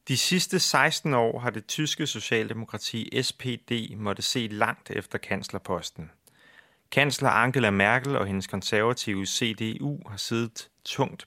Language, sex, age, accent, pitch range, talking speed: Danish, male, 30-49, native, 110-140 Hz, 130 wpm